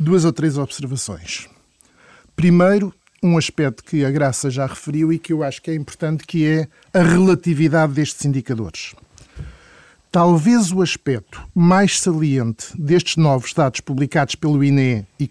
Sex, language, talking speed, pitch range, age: male, Portuguese, 145 wpm, 140-175 Hz, 50-69